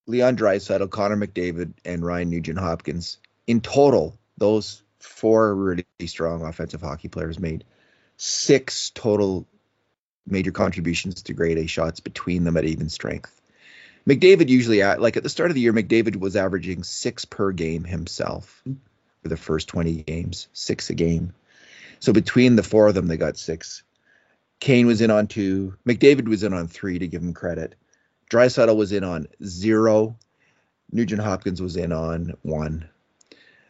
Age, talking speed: 30-49, 155 wpm